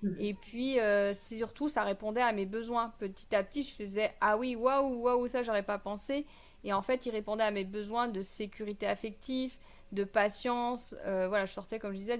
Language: French